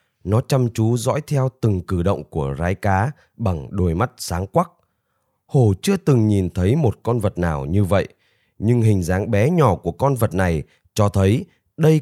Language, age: Vietnamese, 20-39